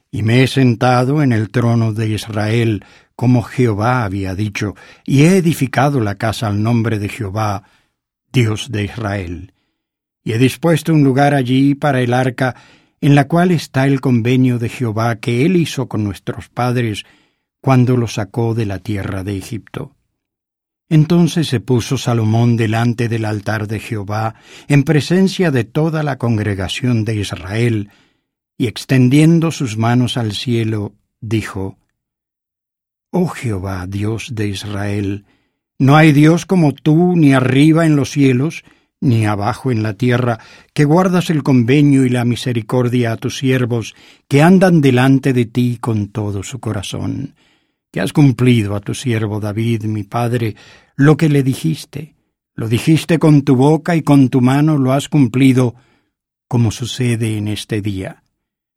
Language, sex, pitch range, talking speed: English, male, 110-140 Hz, 150 wpm